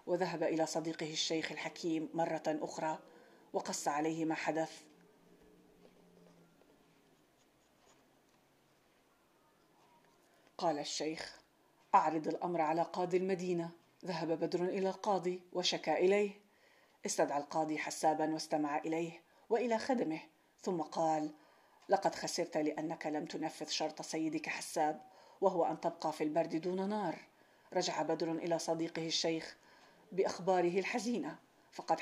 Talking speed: 105 wpm